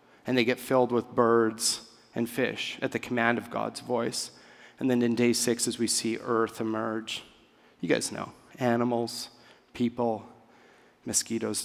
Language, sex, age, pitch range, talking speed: English, male, 30-49, 110-125 Hz, 155 wpm